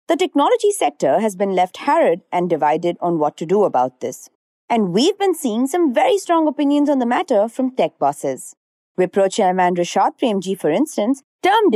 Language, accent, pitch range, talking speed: English, Indian, 190-300 Hz, 185 wpm